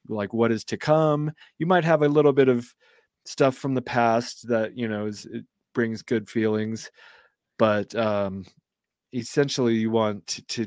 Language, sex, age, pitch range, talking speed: English, male, 30-49, 105-130 Hz, 175 wpm